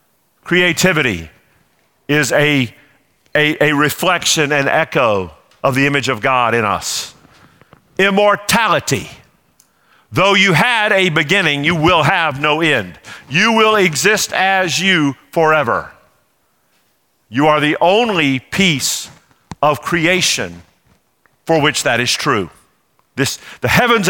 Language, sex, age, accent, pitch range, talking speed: English, male, 50-69, American, 135-175 Hz, 115 wpm